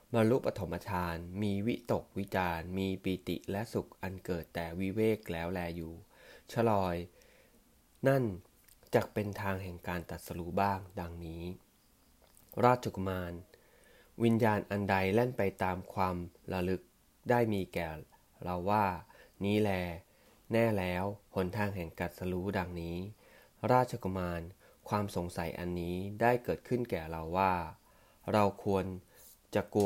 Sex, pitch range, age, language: male, 85-105 Hz, 20-39, English